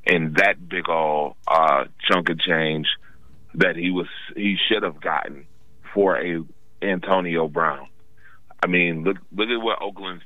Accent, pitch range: American, 85-100 Hz